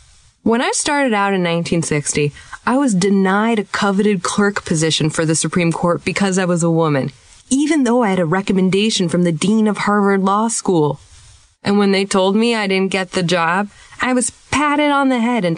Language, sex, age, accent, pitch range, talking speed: English, female, 20-39, American, 165-220 Hz, 200 wpm